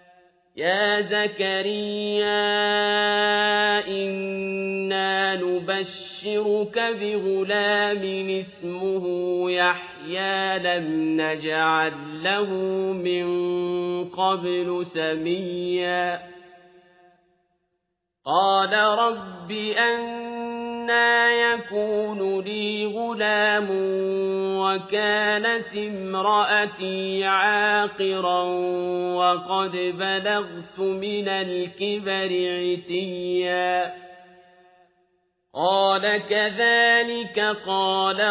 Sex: male